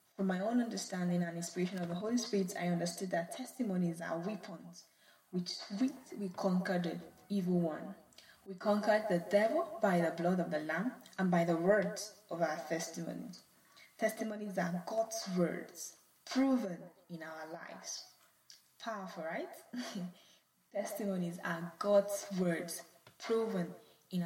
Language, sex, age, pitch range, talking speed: English, female, 10-29, 175-215 Hz, 140 wpm